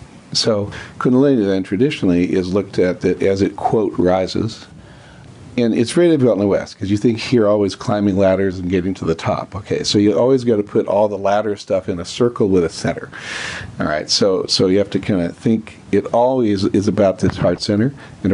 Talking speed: 215 wpm